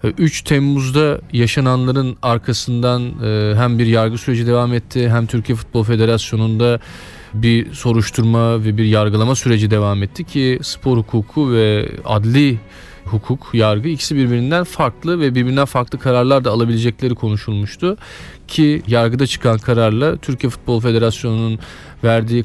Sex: male